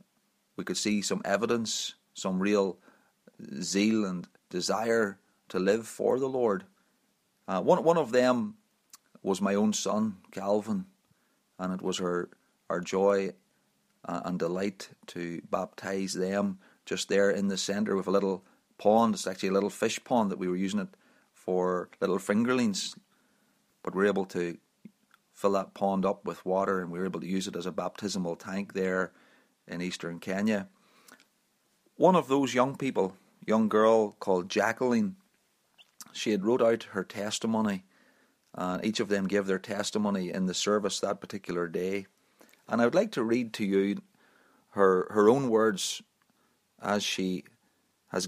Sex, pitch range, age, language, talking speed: male, 95-110 Hz, 40-59, English, 160 wpm